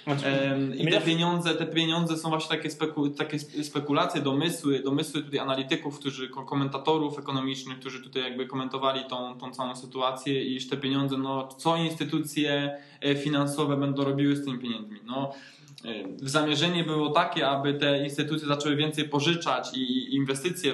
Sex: male